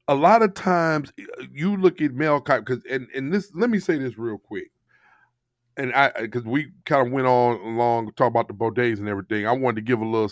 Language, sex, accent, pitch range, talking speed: English, male, American, 120-165 Hz, 225 wpm